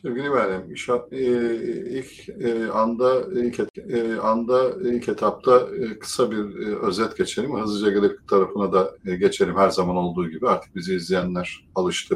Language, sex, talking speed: Turkish, male, 160 wpm